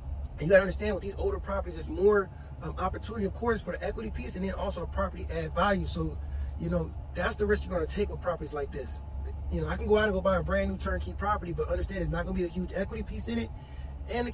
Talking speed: 285 wpm